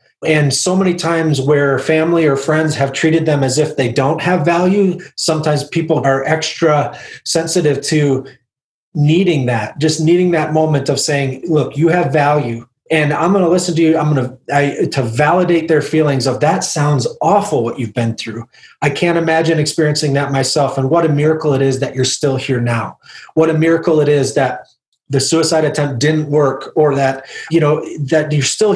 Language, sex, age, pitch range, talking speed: English, male, 30-49, 140-165 Hz, 190 wpm